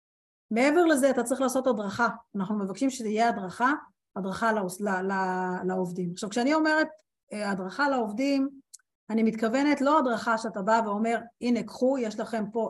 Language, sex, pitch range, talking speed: Hebrew, female, 200-260 Hz, 150 wpm